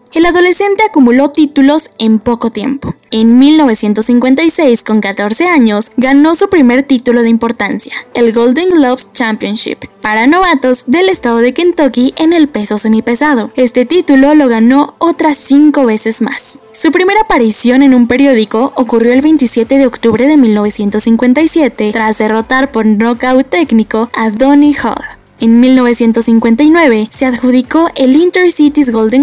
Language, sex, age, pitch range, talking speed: Spanish, female, 10-29, 230-295 Hz, 140 wpm